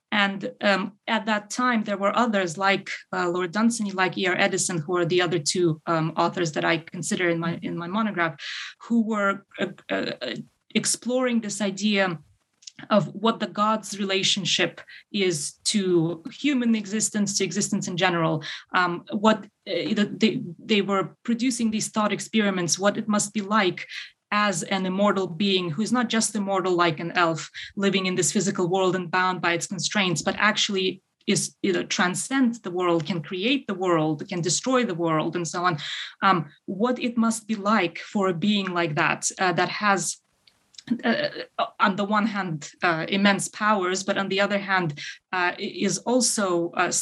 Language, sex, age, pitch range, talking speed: English, female, 20-39, 175-210 Hz, 175 wpm